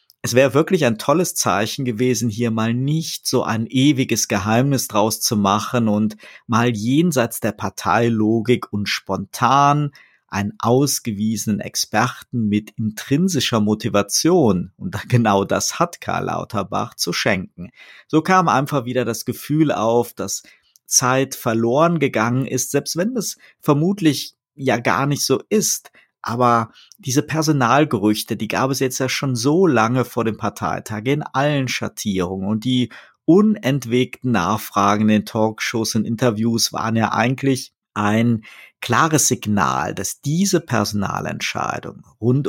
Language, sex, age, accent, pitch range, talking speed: German, male, 50-69, German, 110-140 Hz, 135 wpm